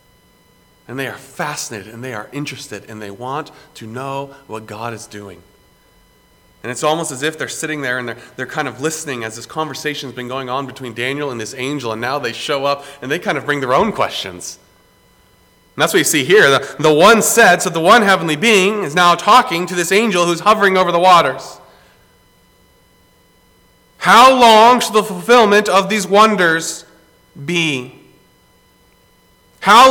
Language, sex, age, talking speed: English, male, 30-49, 185 wpm